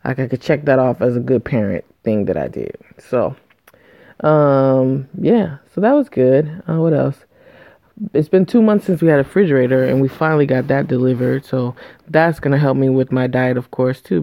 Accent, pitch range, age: American, 125-145 Hz, 20-39